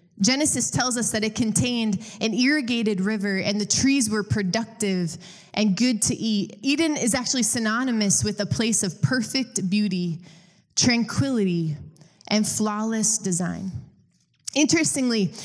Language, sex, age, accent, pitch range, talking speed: English, female, 20-39, American, 195-245 Hz, 130 wpm